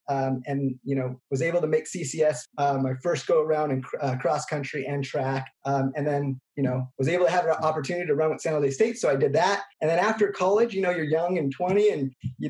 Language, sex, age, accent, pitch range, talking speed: English, male, 20-39, American, 135-175 Hz, 260 wpm